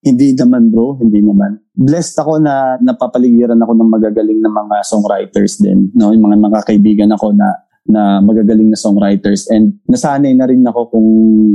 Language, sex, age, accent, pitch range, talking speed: English, male, 20-39, Filipino, 110-165 Hz, 165 wpm